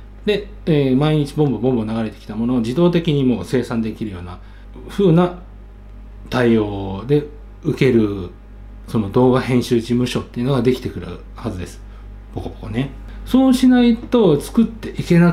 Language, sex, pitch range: Japanese, male, 100-140 Hz